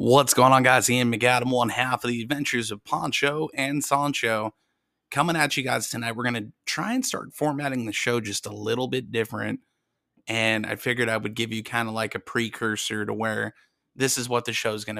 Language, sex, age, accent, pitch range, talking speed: English, male, 30-49, American, 115-135 Hz, 220 wpm